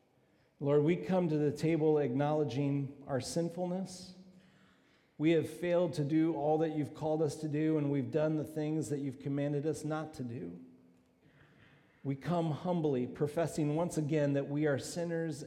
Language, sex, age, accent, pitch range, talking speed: English, male, 50-69, American, 125-155 Hz, 165 wpm